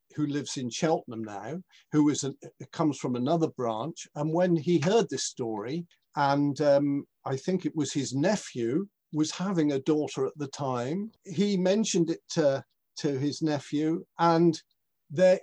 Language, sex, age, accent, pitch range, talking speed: English, male, 50-69, British, 130-175 Hz, 155 wpm